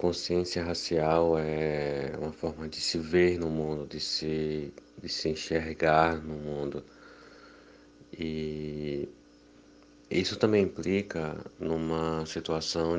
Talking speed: 100 wpm